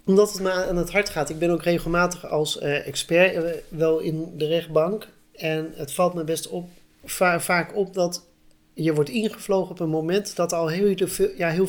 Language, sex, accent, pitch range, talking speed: Dutch, male, Dutch, 150-180 Hz, 190 wpm